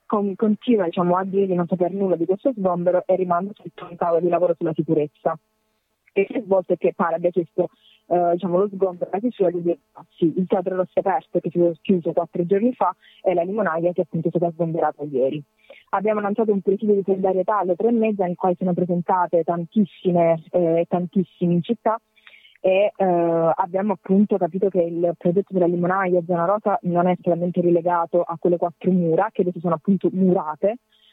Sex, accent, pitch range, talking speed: female, native, 170-190 Hz, 195 wpm